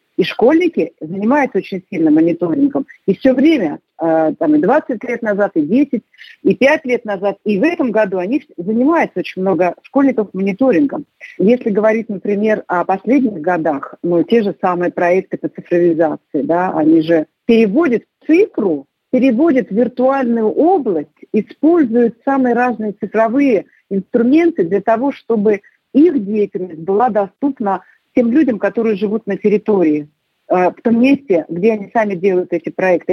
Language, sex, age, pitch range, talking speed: Russian, female, 50-69, 195-260 Hz, 145 wpm